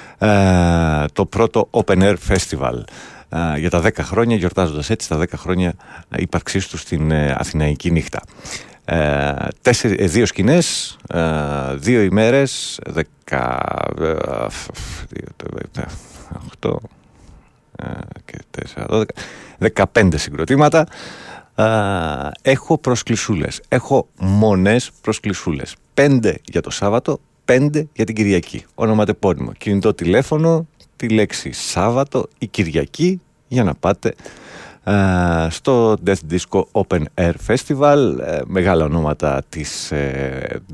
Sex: male